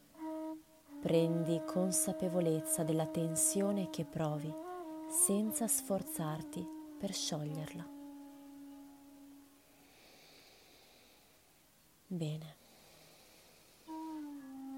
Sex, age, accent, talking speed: female, 20-39, native, 45 wpm